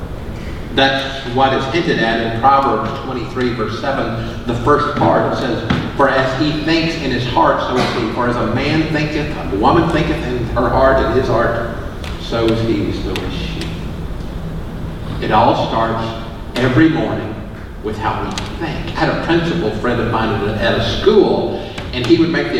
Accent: American